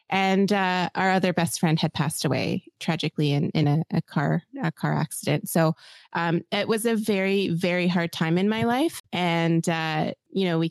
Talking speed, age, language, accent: 195 wpm, 20-39, English, American